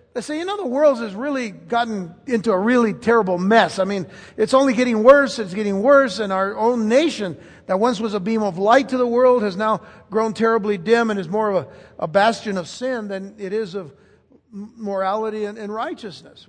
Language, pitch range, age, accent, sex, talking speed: English, 185-250 Hz, 60-79, American, male, 215 wpm